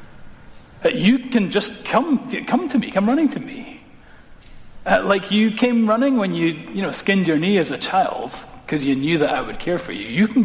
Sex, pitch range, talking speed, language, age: male, 155-220 Hz, 225 wpm, English, 40-59